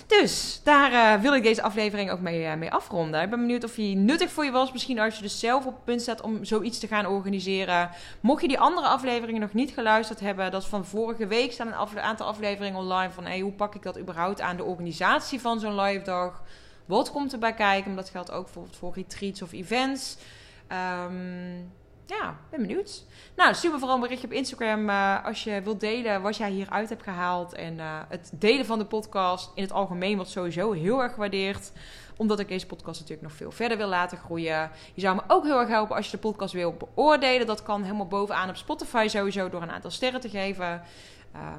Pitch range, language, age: 180-230 Hz, Dutch, 20-39